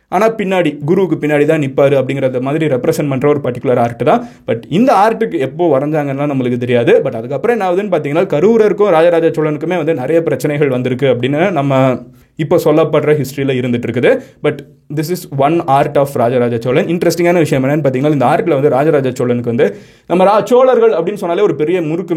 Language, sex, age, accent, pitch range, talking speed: Tamil, male, 20-39, native, 130-180 Hz, 175 wpm